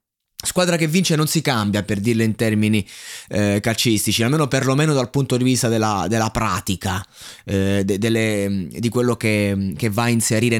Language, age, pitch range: Italian, 20-39, 110-155 Hz